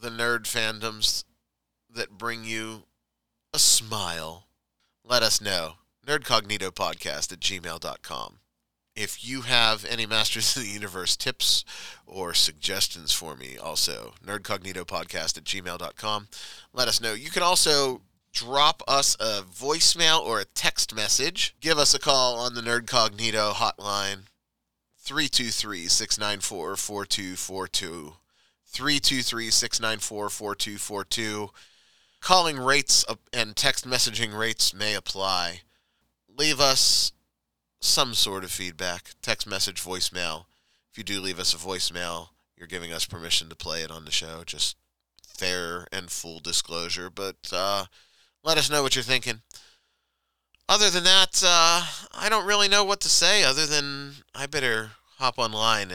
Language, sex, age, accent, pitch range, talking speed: English, male, 30-49, American, 90-125 Hz, 125 wpm